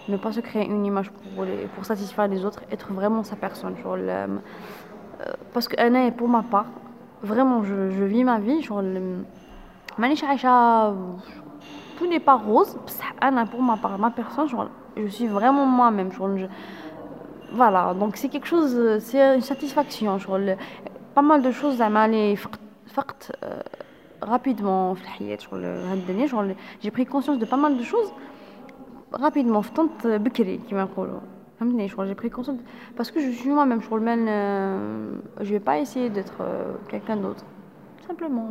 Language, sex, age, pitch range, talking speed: Arabic, female, 20-39, 200-255 Hz, 150 wpm